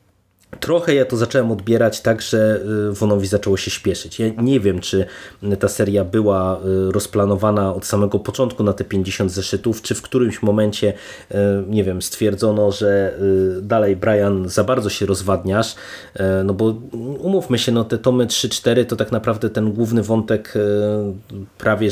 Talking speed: 150 wpm